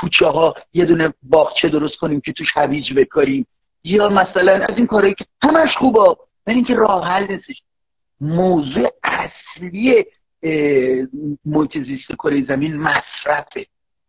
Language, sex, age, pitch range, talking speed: Persian, male, 50-69, 155-215 Hz, 130 wpm